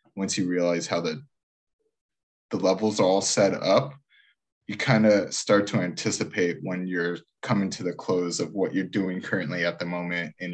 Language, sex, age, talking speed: English, male, 20-39, 180 wpm